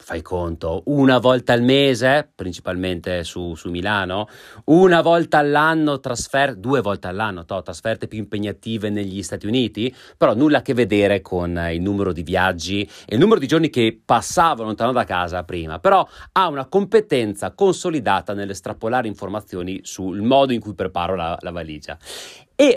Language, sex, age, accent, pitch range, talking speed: Italian, male, 30-49, native, 95-155 Hz, 155 wpm